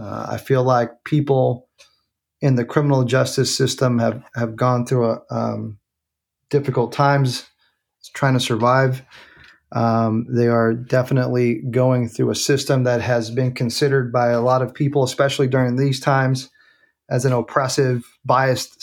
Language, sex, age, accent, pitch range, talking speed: English, male, 30-49, American, 125-145 Hz, 145 wpm